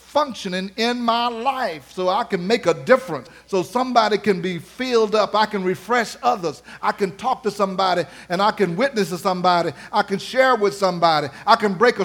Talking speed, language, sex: 200 wpm, English, male